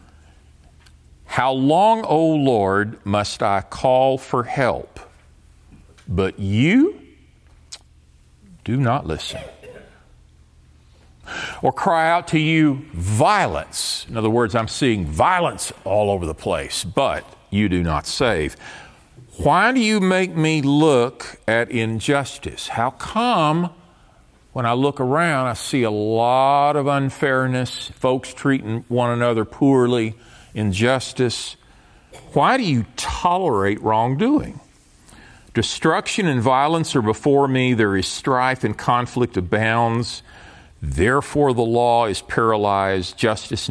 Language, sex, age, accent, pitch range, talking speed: English, male, 50-69, American, 90-135 Hz, 115 wpm